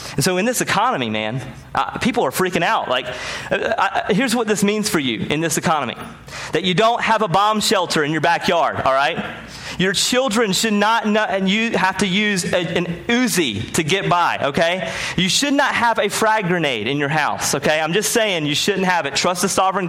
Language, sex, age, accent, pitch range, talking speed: English, male, 30-49, American, 155-220 Hz, 215 wpm